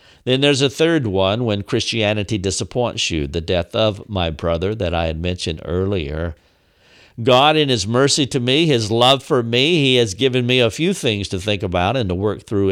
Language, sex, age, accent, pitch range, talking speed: English, male, 50-69, American, 95-125 Hz, 205 wpm